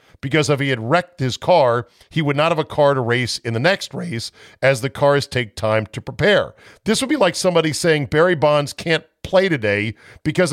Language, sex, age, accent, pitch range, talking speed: English, male, 50-69, American, 110-160 Hz, 215 wpm